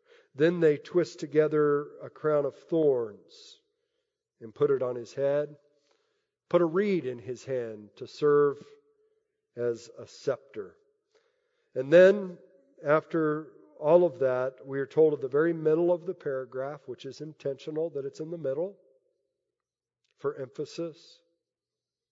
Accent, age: American, 50-69